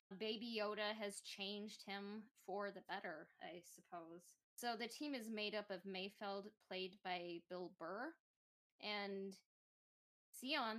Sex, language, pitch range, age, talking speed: female, English, 185-210 Hz, 10-29, 135 wpm